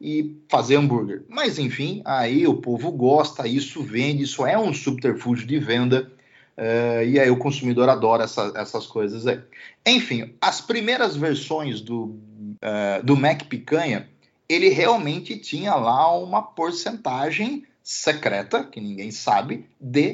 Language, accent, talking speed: Portuguese, Brazilian, 140 wpm